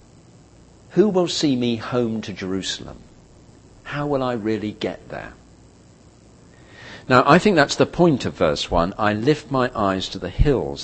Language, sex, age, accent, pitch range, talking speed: English, male, 50-69, British, 85-125 Hz, 160 wpm